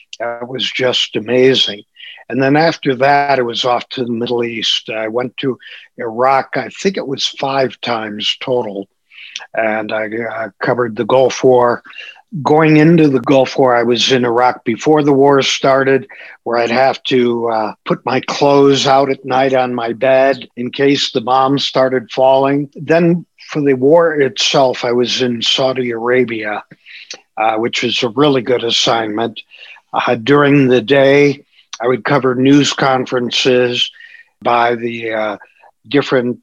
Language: English